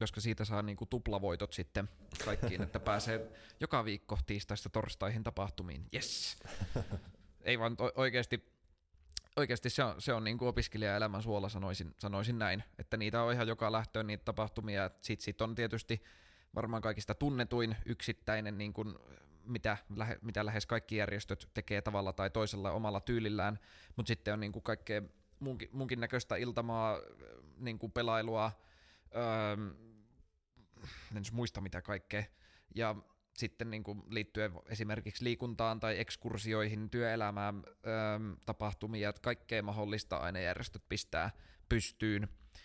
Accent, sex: native, male